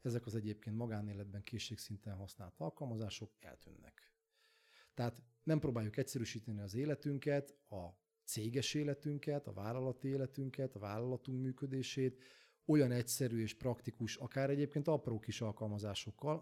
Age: 30-49